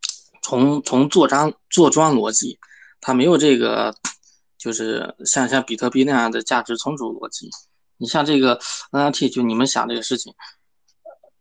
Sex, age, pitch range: male, 20-39, 120-165 Hz